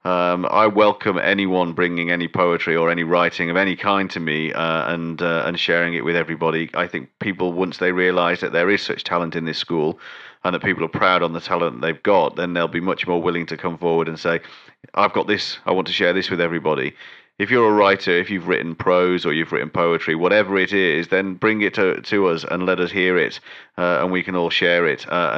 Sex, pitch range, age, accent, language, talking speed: male, 80-90 Hz, 40-59, British, English, 240 wpm